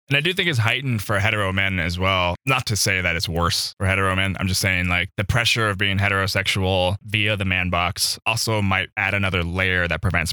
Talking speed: 230 wpm